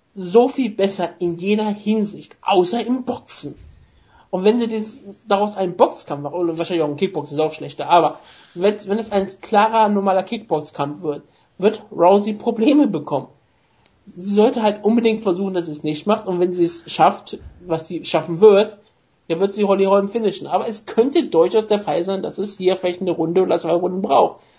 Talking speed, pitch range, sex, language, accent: 190 wpm, 165-210 Hz, male, German, German